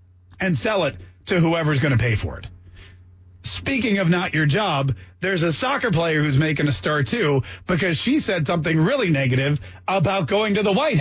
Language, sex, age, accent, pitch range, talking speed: English, male, 30-49, American, 155-230 Hz, 190 wpm